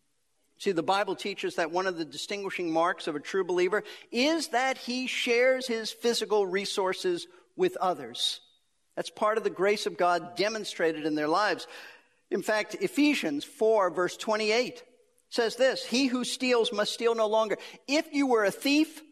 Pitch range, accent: 190-260 Hz, American